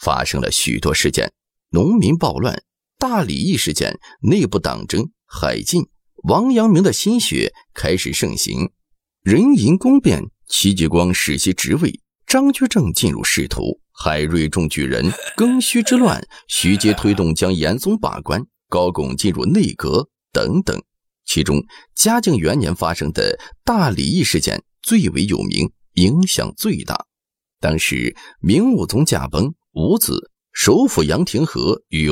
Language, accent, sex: Chinese, native, male